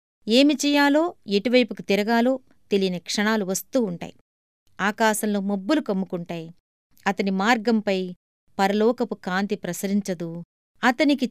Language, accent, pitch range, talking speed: Telugu, native, 185-240 Hz, 90 wpm